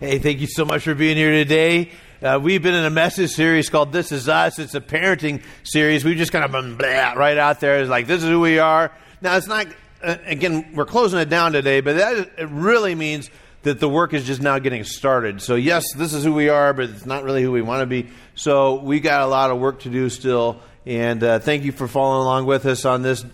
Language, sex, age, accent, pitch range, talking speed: English, male, 40-59, American, 135-175 Hz, 260 wpm